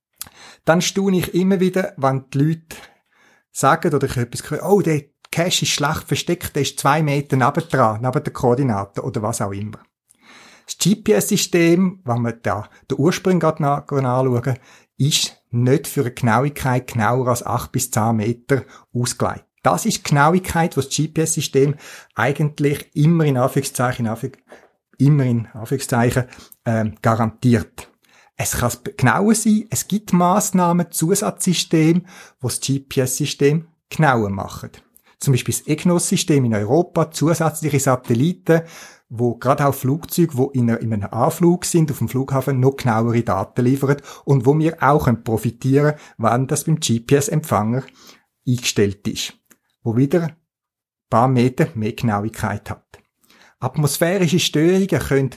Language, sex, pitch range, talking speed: German, male, 120-165 Hz, 135 wpm